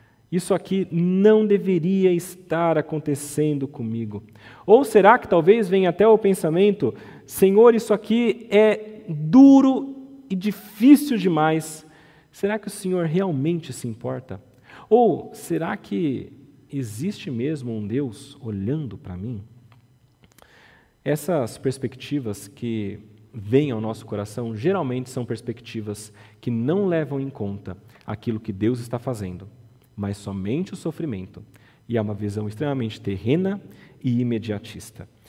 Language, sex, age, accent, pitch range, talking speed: Portuguese, male, 40-59, Brazilian, 115-175 Hz, 125 wpm